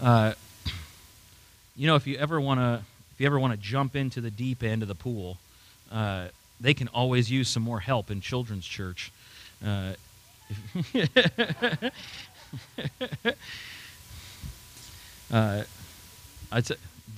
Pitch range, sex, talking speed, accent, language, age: 110-150 Hz, male, 115 wpm, American, English, 30-49